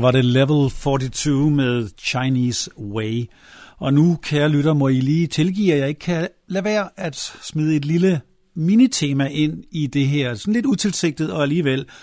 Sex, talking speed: male, 175 wpm